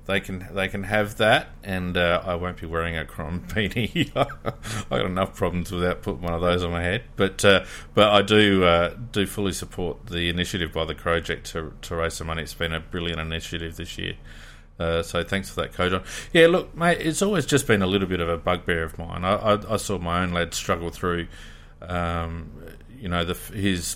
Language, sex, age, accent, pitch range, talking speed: English, male, 30-49, Australian, 85-100 Hz, 220 wpm